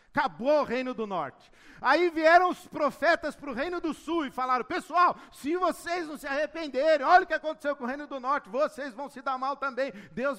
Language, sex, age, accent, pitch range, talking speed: Portuguese, male, 50-69, Brazilian, 170-275 Hz, 220 wpm